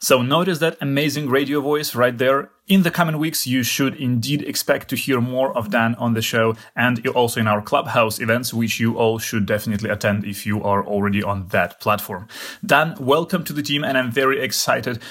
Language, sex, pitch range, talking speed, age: English, male, 110-145 Hz, 205 wpm, 30-49